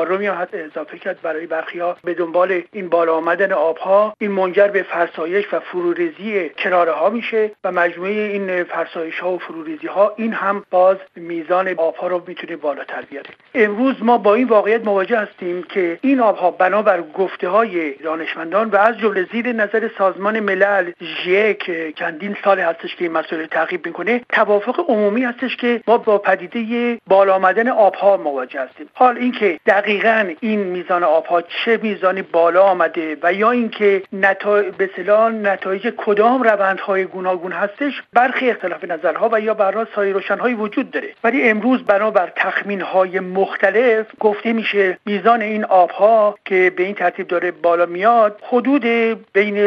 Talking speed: 165 wpm